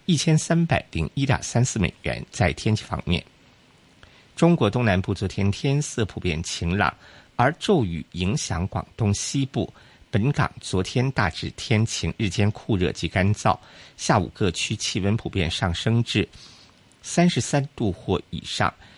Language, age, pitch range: Chinese, 50-69, 95-130 Hz